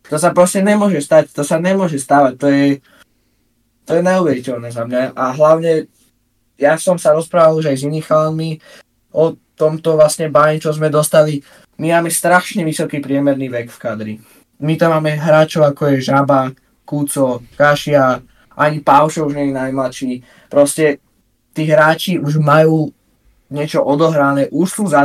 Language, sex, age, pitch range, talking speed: Slovak, male, 20-39, 130-160 Hz, 160 wpm